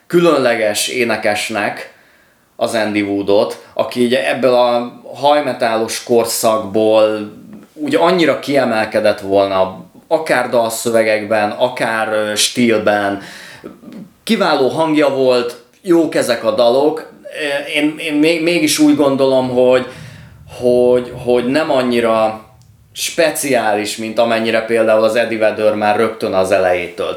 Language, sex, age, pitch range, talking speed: Hungarian, male, 30-49, 105-130 Hz, 100 wpm